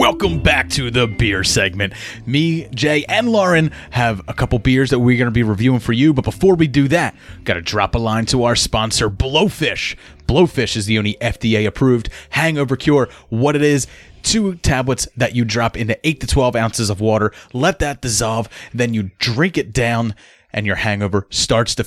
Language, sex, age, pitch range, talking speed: English, male, 30-49, 105-140 Hz, 195 wpm